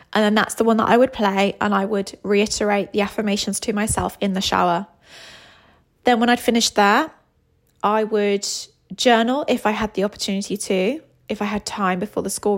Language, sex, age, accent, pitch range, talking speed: English, female, 20-39, British, 190-230 Hz, 195 wpm